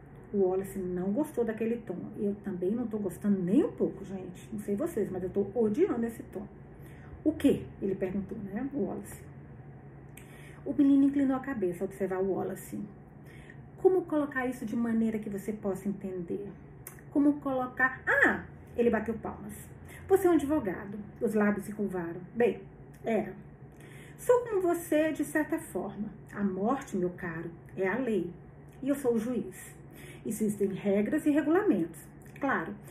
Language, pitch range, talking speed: Portuguese, 195-275 Hz, 155 wpm